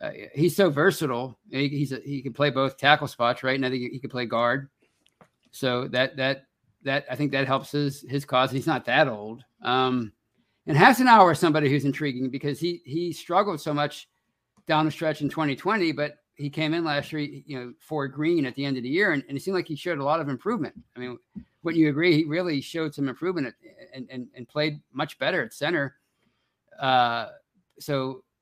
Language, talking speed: English, 220 wpm